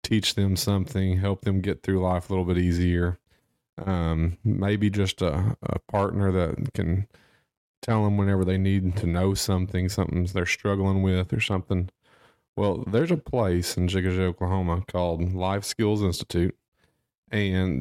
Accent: American